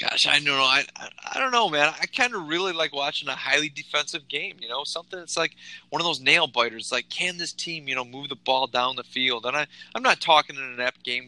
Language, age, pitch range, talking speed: English, 20-39, 115-135 Hz, 270 wpm